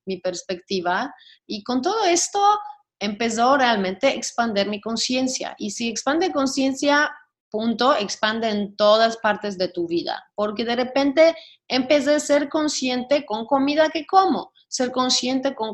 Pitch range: 215-290 Hz